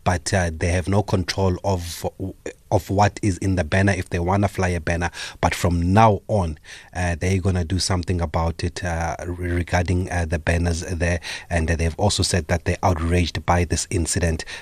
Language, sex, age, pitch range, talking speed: English, male, 30-49, 85-95 Hz, 210 wpm